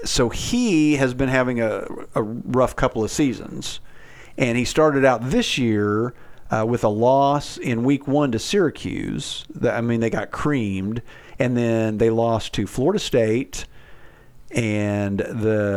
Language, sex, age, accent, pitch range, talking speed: English, male, 50-69, American, 110-135 Hz, 150 wpm